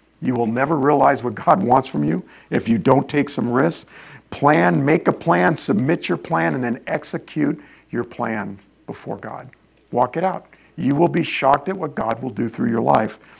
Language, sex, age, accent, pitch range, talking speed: English, male, 50-69, American, 130-185 Hz, 195 wpm